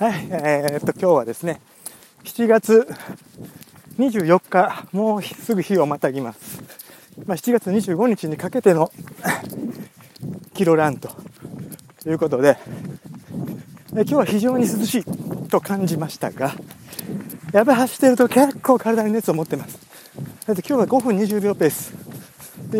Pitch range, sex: 165-225 Hz, male